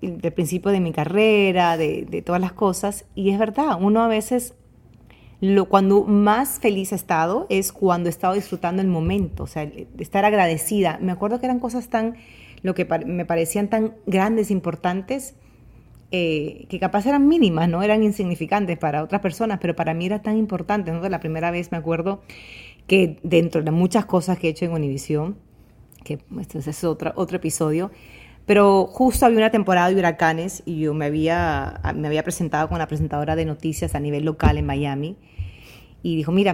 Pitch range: 155-200 Hz